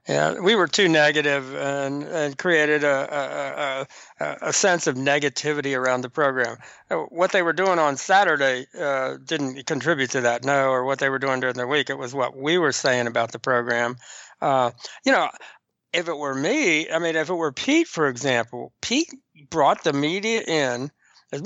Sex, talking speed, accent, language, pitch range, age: male, 190 wpm, American, English, 140-185 Hz, 60-79